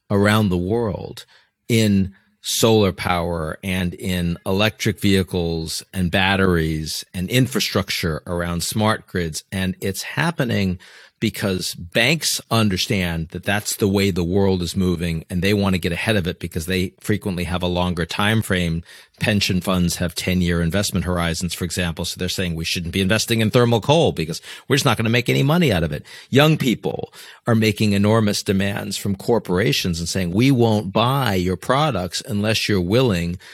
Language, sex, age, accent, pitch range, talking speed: English, male, 40-59, American, 90-110 Hz, 170 wpm